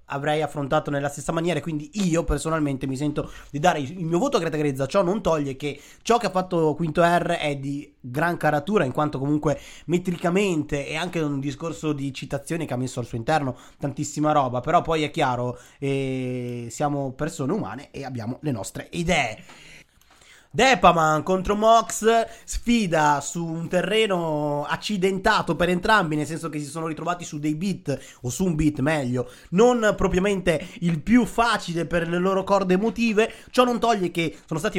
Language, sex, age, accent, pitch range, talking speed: Italian, male, 30-49, native, 145-185 Hz, 180 wpm